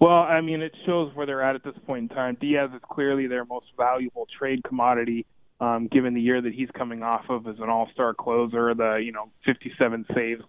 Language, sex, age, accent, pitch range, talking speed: English, male, 20-39, American, 120-145 Hz, 225 wpm